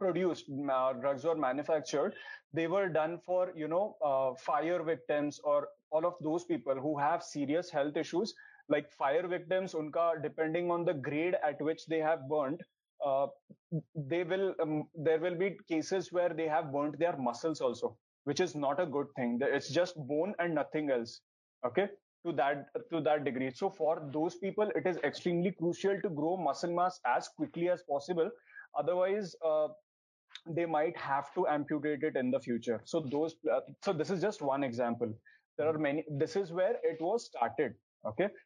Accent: native